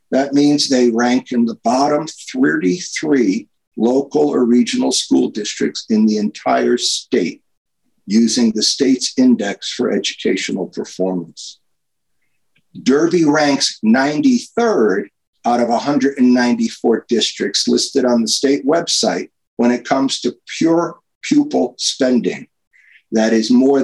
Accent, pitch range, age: American, 120-195 Hz, 50-69